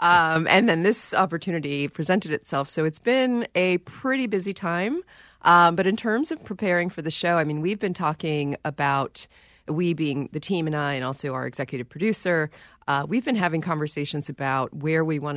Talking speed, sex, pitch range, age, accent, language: 190 wpm, female, 140-170 Hz, 30-49, American, English